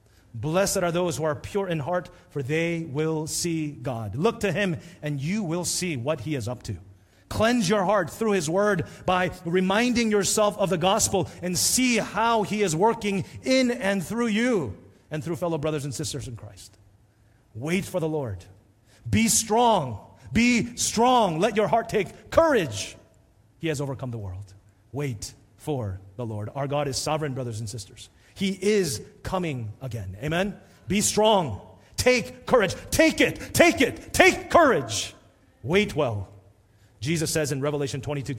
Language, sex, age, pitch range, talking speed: English, male, 30-49, 105-175 Hz, 165 wpm